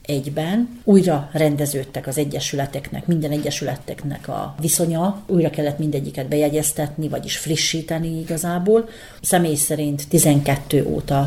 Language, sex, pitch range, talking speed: Hungarian, female, 145-170 Hz, 105 wpm